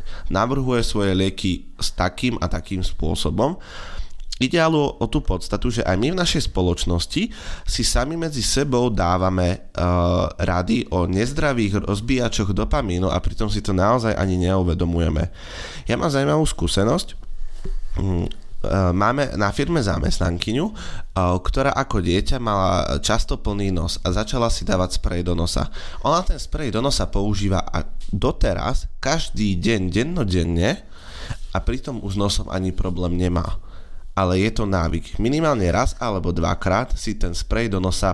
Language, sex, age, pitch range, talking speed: Slovak, male, 20-39, 90-110 Hz, 145 wpm